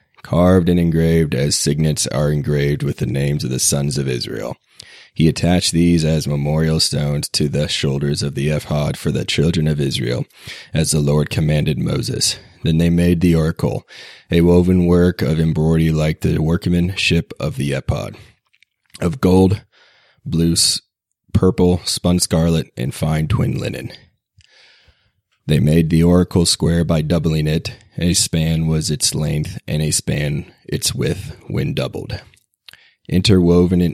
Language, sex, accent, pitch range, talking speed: English, male, American, 75-85 Hz, 150 wpm